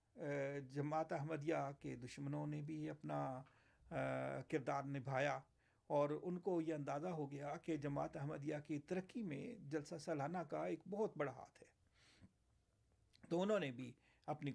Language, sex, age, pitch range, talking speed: Urdu, male, 50-69, 135-160 Hz, 145 wpm